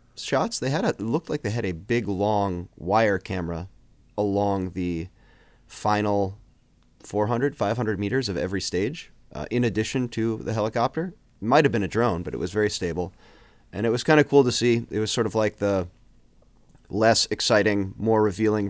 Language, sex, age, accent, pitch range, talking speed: English, male, 30-49, American, 95-115 Hz, 185 wpm